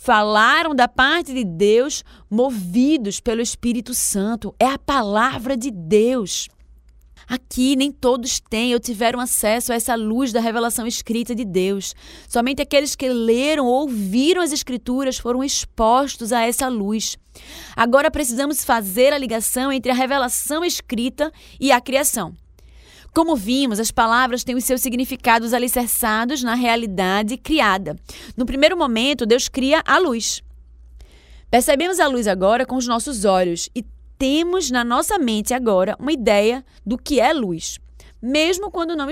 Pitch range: 220-275 Hz